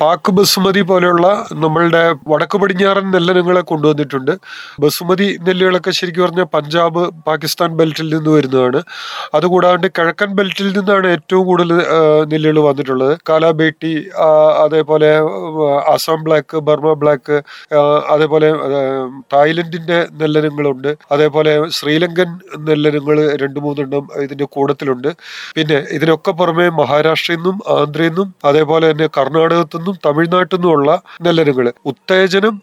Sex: male